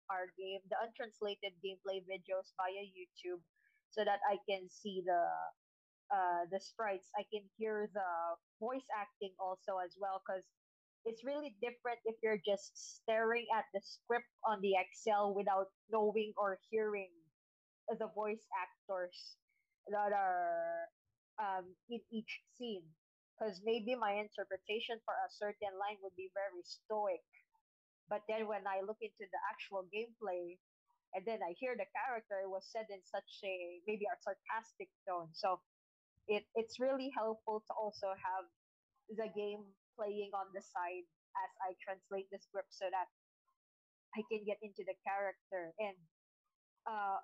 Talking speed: 150 wpm